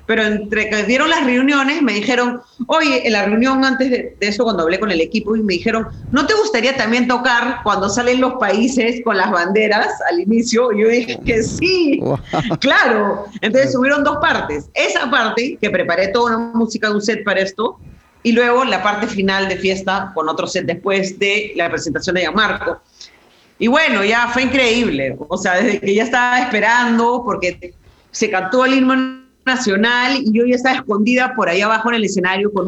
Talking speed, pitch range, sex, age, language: 195 wpm, 210-260 Hz, female, 40-59, Spanish